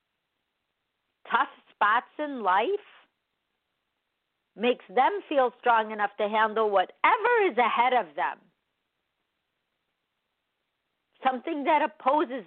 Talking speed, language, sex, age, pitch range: 90 wpm, English, female, 50-69, 185-260 Hz